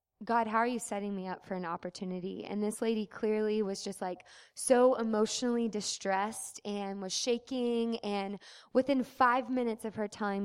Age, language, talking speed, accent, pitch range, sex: 20-39, English, 170 wpm, American, 195-240 Hz, female